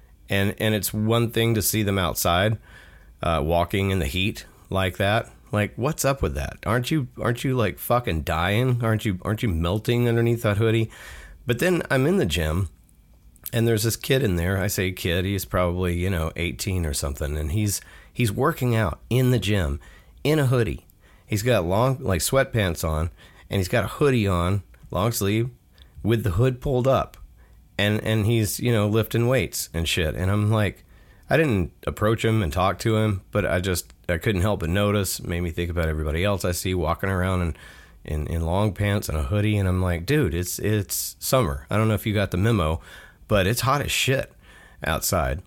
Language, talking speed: English, 205 wpm